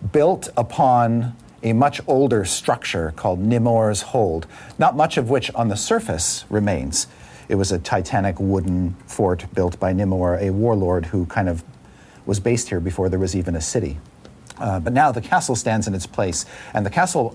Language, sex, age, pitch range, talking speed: English, male, 50-69, 85-115 Hz, 180 wpm